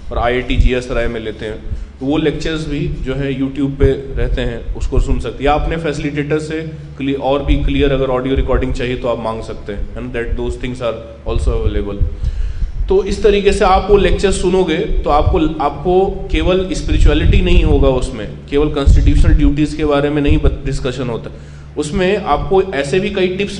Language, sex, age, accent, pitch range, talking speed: Hindi, male, 20-39, native, 100-155 Hz, 175 wpm